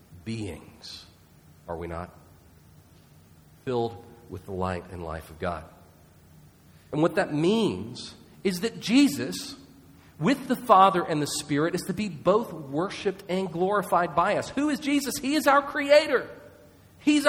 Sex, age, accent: male, 40-59, American